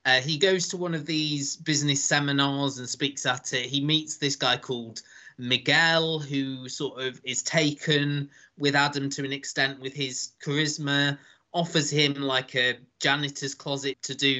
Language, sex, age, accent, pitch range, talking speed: English, male, 20-39, British, 130-145 Hz, 165 wpm